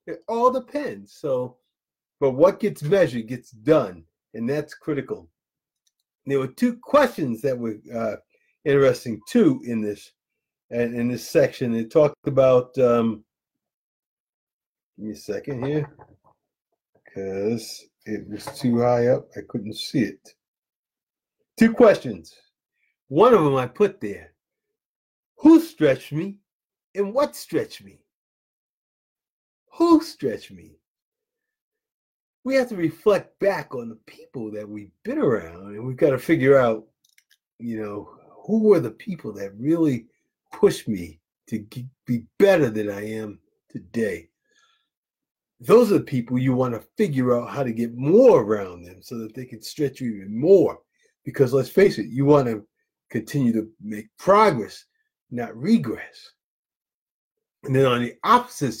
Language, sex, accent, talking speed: English, male, American, 145 wpm